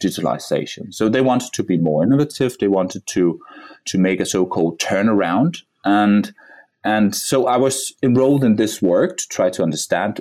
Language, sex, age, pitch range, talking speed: English, male, 30-49, 90-115 Hz, 170 wpm